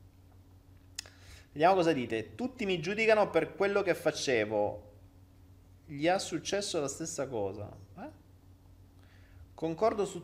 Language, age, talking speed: Italian, 30-49, 110 wpm